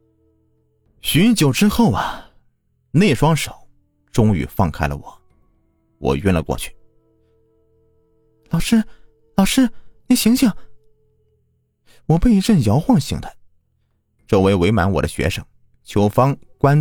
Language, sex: Chinese, male